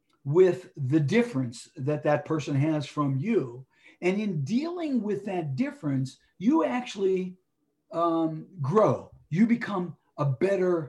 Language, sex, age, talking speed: English, male, 60-79, 125 wpm